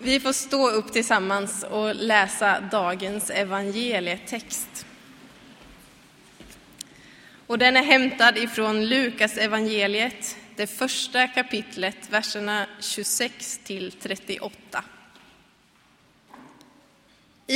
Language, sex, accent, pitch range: Swedish, female, native, 205-245 Hz